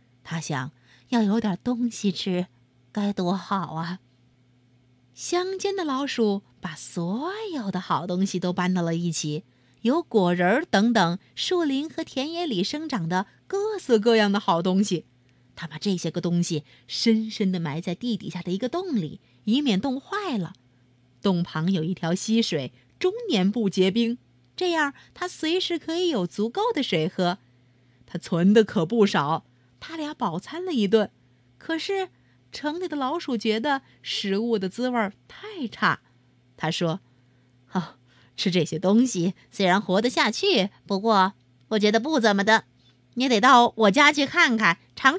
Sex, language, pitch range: female, Chinese, 155-245 Hz